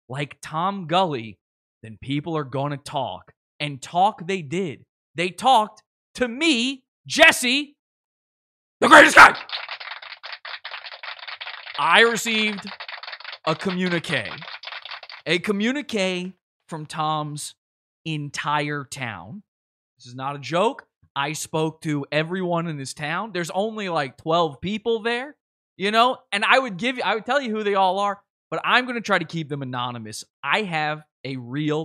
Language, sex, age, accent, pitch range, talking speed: English, male, 20-39, American, 150-220 Hz, 145 wpm